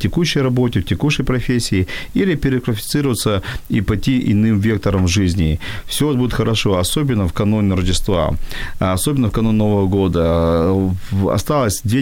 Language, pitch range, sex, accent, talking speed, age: Ukrainian, 95-120 Hz, male, native, 135 wpm, 40-59